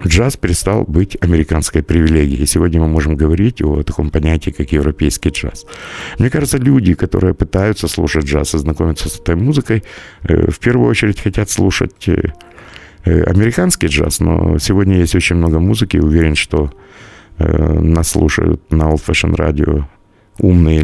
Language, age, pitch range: Russian, 50-69, 80-105 Hz